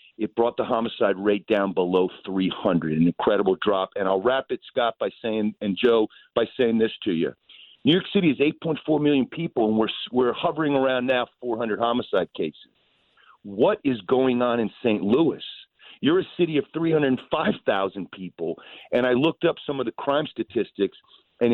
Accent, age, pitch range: American, 40-59, 115-150 Hz